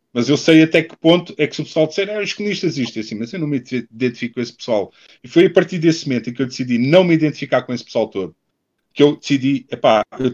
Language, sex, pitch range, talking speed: Portuguese, male, 125-190 Hz, 265 wpm